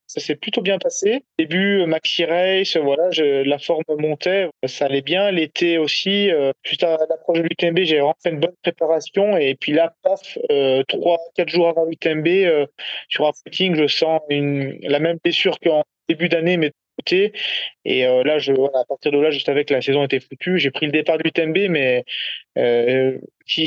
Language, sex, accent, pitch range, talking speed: French, male, French, 145-175 Hz, 200 wpm